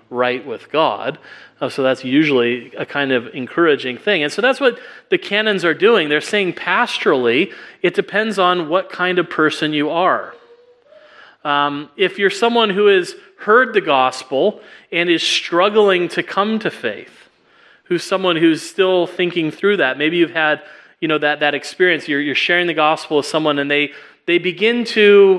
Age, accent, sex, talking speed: 30-49, American, male, 190 wpm